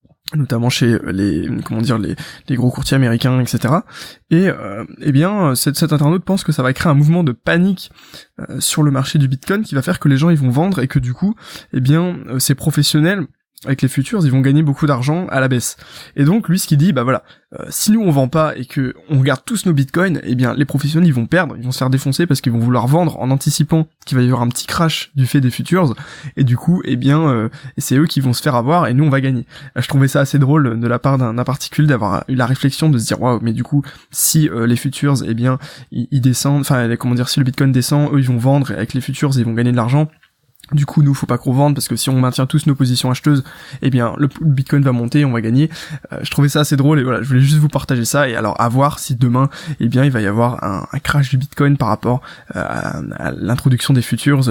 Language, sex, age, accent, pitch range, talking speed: French, male, 20-39, French, 125-150 Hz, 270 wpm